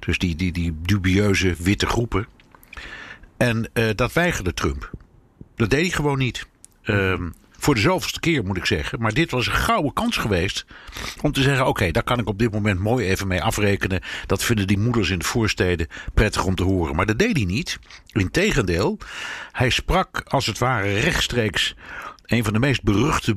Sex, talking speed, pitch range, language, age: male, 190 wpm, 95-130 Hz, Dutch, 60-79